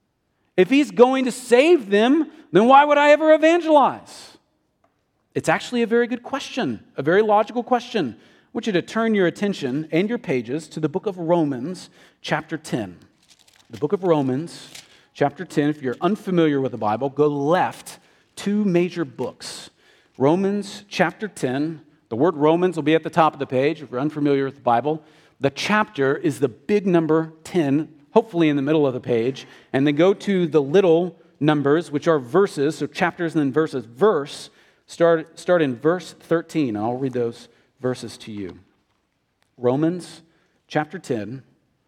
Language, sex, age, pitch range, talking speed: English, male, 40-59, 130-185 Hz, 175 wpm